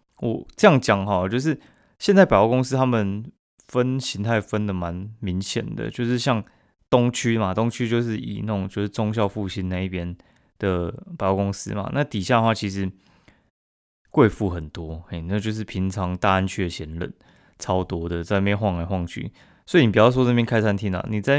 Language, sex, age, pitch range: Chinese, male, 20-39, 95-115 Hz